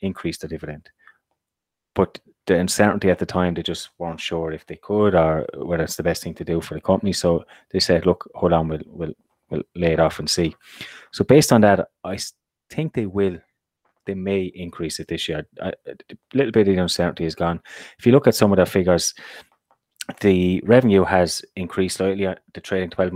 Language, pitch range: English, 85-95 Hz